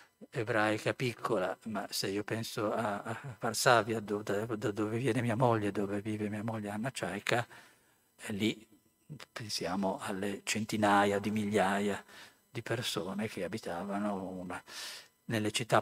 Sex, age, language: male, 50-69, Italian